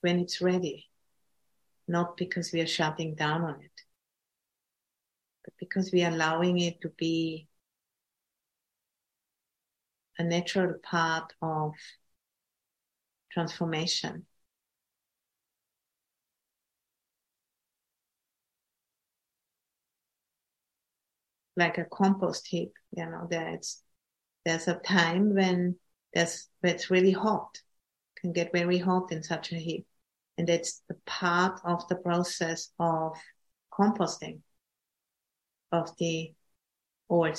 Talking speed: 100 wpm